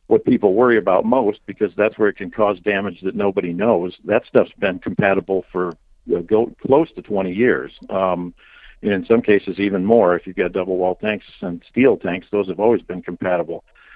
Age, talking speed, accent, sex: 50-69, 205 wpm, American, male